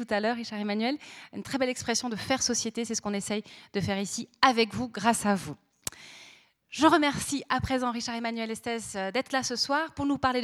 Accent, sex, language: French, female, French